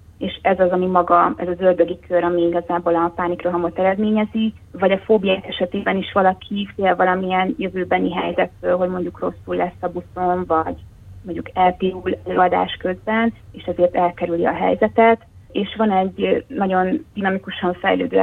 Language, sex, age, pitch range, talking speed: Hungarian, female, 30-49, 175-195 Hz, 150 wpm